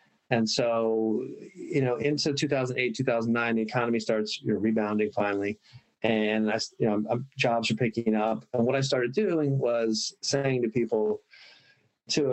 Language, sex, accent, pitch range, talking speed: English, male, American, 105-125 Hz, 130 wpm